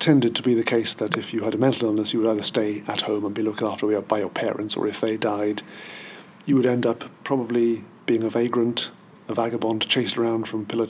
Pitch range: 110-130 Hz